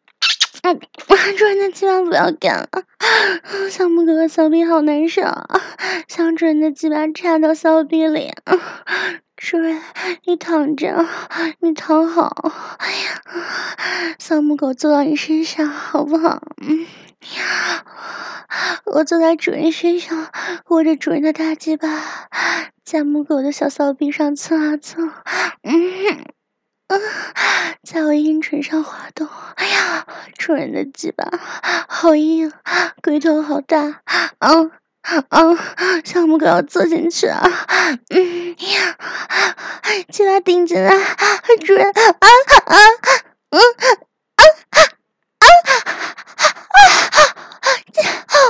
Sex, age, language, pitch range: female, 20-39, Chinese, 310-365 Hz